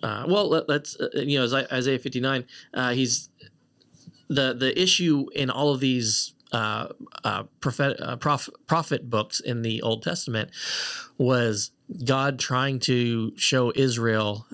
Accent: American